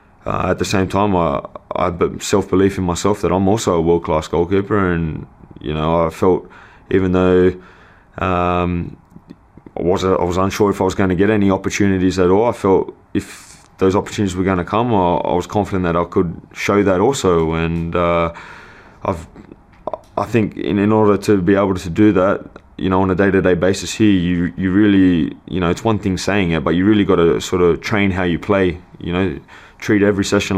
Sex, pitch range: male, 90-100 Hz